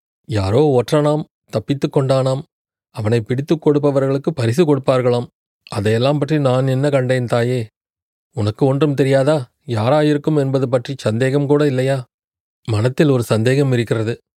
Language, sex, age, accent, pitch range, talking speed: Tamil, male, 30-49, native, 120-145 Hz, 115 wpm